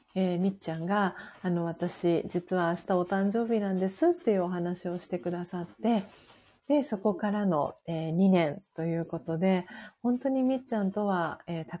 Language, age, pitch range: Japanese, 40-59, 170-210 Hz